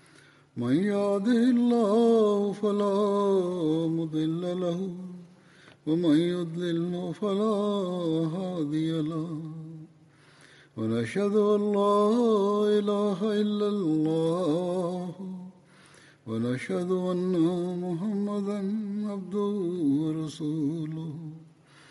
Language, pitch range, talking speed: Arabic, 160-205 Hz, 60 wpm